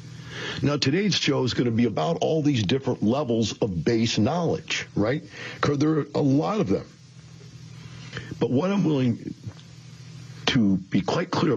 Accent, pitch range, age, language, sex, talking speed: American, 115-150 Hz, 50-69, English, male, 160 wpm